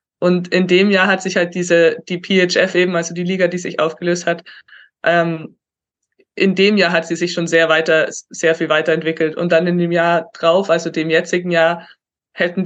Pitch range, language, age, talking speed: 165-185 Hz, German, 20-39, 200 wpm